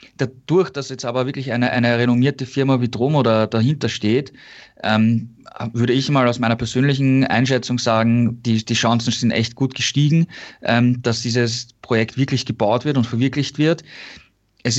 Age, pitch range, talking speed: 20-39, 115-125 Hz, 160 wpm